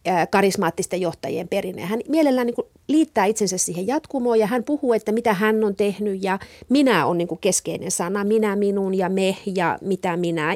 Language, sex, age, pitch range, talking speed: Finnish, female, 40-59, 190-255 Hz, 175 wpm